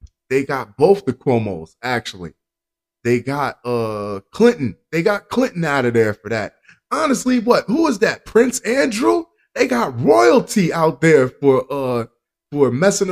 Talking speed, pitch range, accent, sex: 155 wpm, 110-175 Hz, American, male